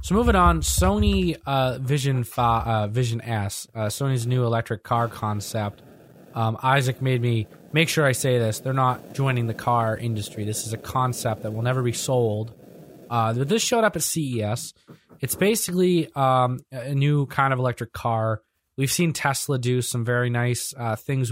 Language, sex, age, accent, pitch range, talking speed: English, male, 20-39, American, 115-140 Hz, 175 wpm